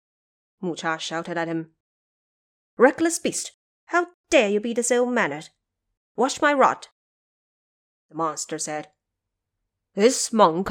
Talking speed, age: 120 wpm, 30-49